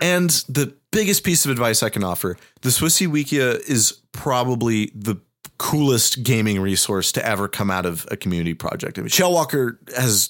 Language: English